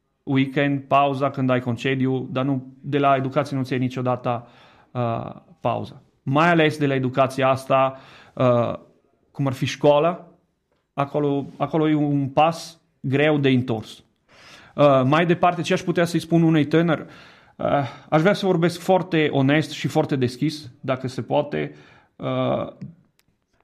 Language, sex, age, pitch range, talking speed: Romanian, male, 30-49, 130-150 Hz, 145 wpm